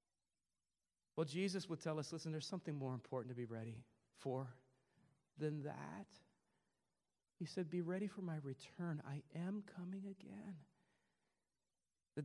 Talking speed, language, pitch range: 135 wpm, English, 140-215 Hz